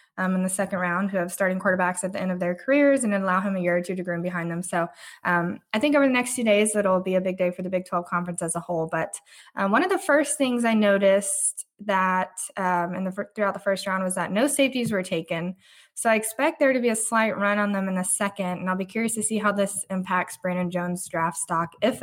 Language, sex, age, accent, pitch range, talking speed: English, female, 20-39, American, 180-210 Hz, 265 wpm